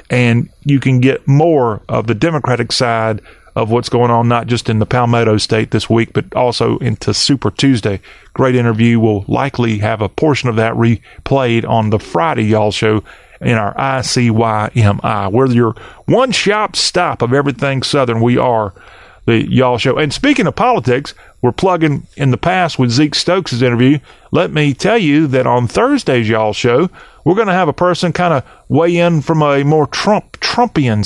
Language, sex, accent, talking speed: English, male, American, 180 wpm